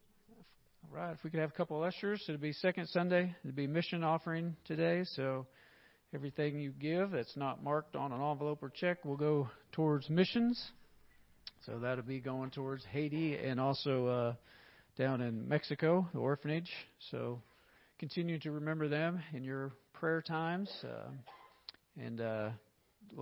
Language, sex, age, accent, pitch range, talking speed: English, male, 40-59, American, 120-150 Hz, 160 wpm